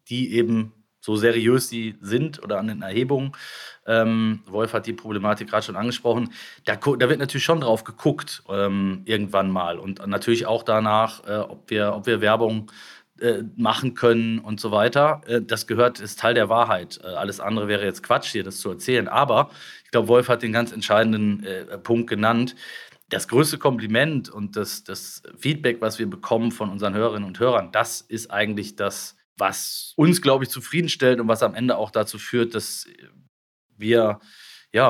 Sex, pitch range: male, 110-135 Hz